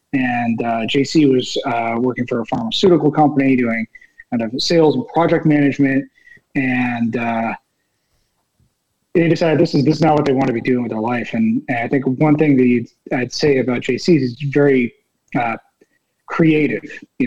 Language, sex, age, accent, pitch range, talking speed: English, male, 30-49, American, 125-155 Hz, 175 wpm